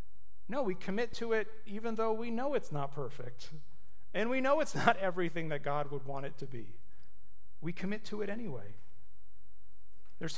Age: 40-59